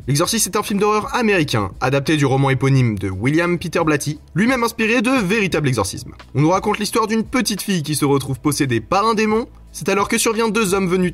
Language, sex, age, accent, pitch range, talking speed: French, male, 20-39, French, 135-195 Hz, 215 wpm